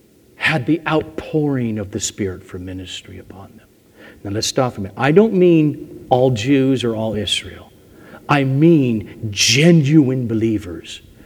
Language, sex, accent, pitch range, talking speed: English, male, American, 120-165 Hz, 145 wpm